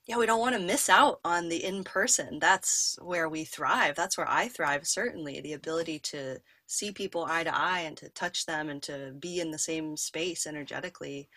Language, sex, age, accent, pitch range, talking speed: English, female, 20-39, American, 150-180 Hz, 205 wpm